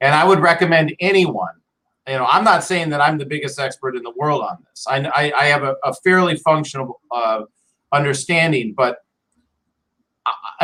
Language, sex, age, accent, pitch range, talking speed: English, male, 40-59, American, 135-170 Hz, 180 wpm